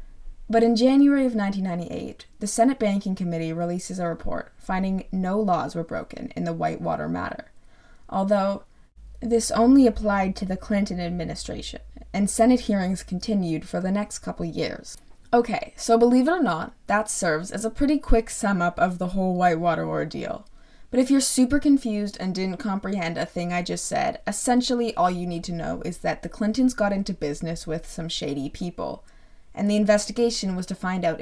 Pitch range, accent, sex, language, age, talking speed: 175-230 Hz, American, female, English, 20-39, 180 wpm